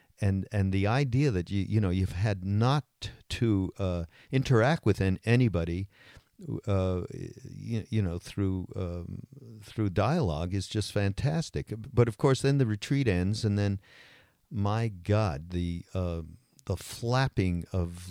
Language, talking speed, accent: English, 145 wpm, American